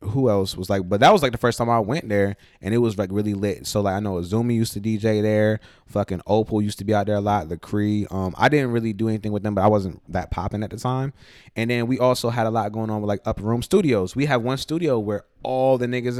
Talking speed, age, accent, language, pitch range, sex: 290 wpm, 20-39, American, English, 100-125 Hz, male